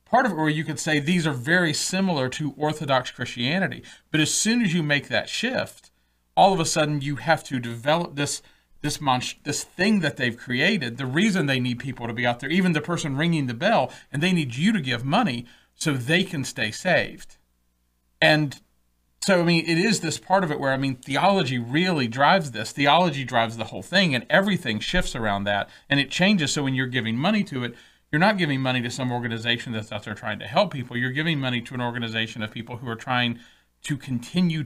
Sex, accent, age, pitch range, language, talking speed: male, American, 40-59, 120-160 Hz, English, 220 wpm